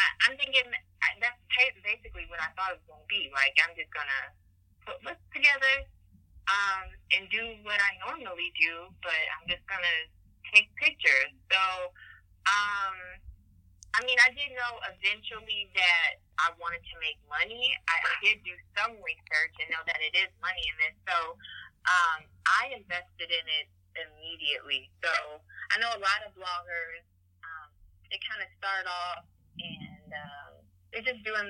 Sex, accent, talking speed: female, American, 165 wpm